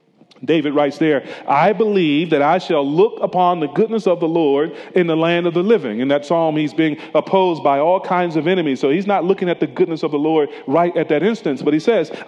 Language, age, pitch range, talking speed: English, 40-59, 160-220 Hz, 240 wpm